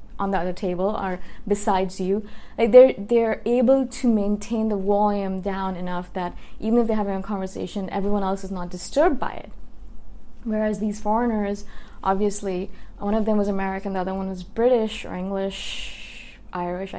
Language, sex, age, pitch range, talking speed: English, female, 20-39, 190-240 Hz, 170 wpm